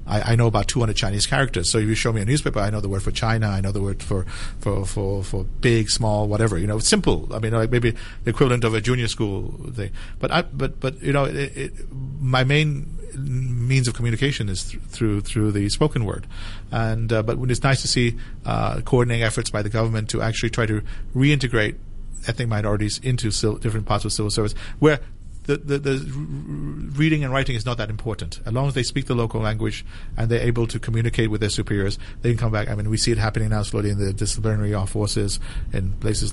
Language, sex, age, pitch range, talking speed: English, male, 50-69, 105-125 Hz, 230 wpm